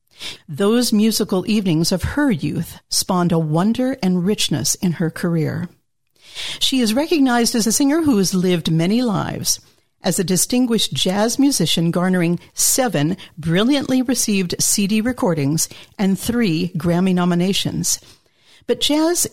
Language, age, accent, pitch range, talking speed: English, 50-69, American, 175-245 Hz, 130 wpm